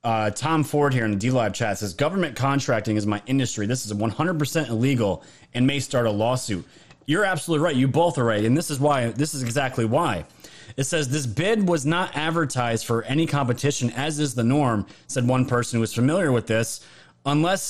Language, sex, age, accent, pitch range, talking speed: English, male, 30-49, American, 120-155 Hz, 205 wpm